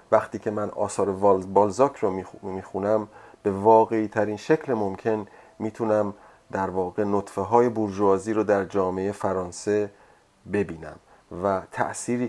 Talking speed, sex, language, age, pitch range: 120 wpm, male, Persian, 30-49, 95-115 Hz